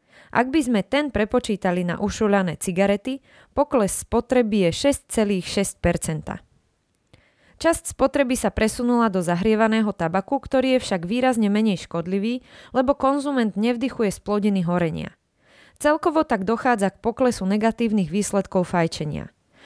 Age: 20-39